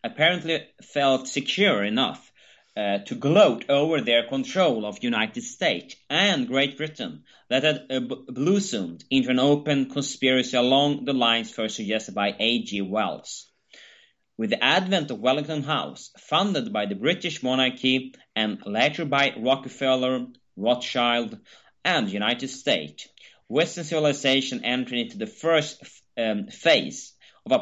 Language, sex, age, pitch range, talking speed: English, male, 30-49, 120-155 Hz, 140 wpm